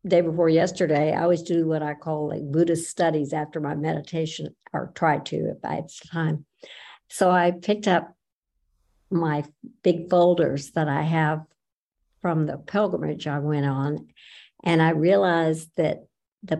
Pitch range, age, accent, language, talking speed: 150-175 Hz, 60-79, American, English, 155 wpm